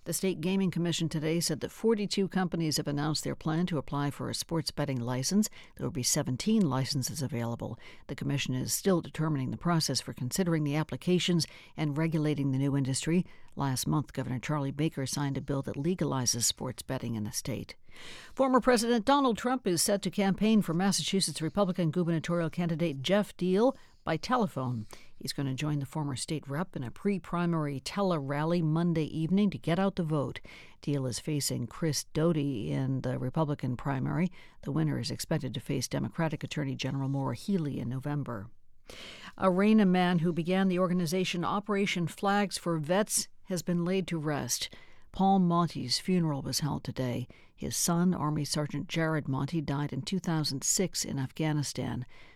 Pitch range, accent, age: 135-180 Hz, American, 60-79